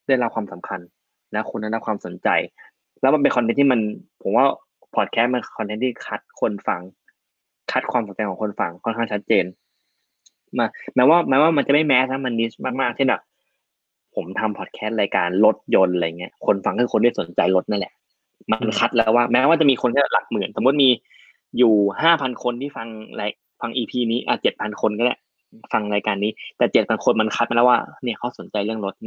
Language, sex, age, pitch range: Thai, male, 20-39, 105-125 Hz